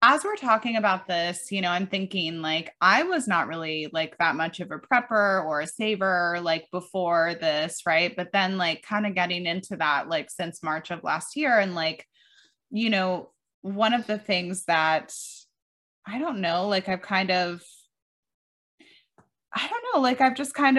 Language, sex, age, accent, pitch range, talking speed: English, female, 20-39, American, 175-225 Hz, 185 wpm